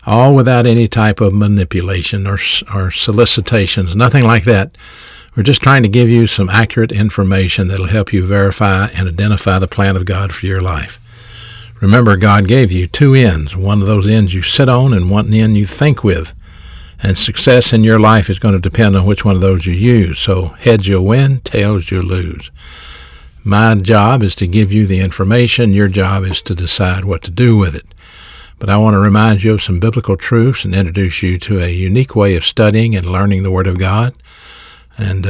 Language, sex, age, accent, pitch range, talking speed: English, male, 60-79, American, 95-115 Hz, 205 wpm